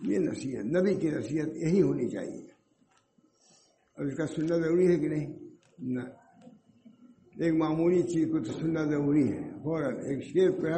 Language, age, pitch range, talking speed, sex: English, 60-79, 155-185 Hz, 90 wpm, male